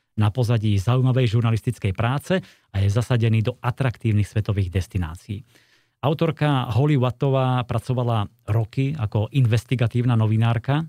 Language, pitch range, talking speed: Slovak, 105-130 Hz, 110 wpm